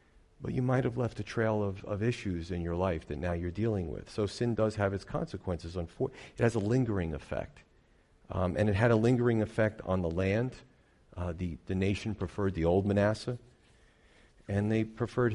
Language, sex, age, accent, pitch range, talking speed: English, male, 40-59, American, 90-105 Hz, 195 wpm